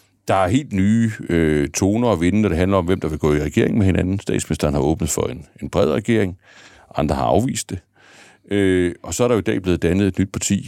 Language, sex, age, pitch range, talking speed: Danish, male, 60-79, 85-110 Hz, 255 wpm